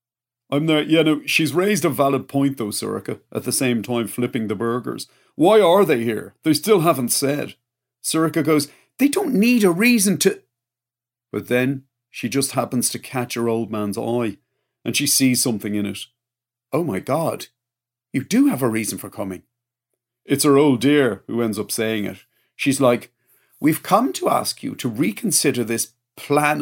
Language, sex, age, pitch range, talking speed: English, male, 40-59, 120-150 Hz, 185 wpm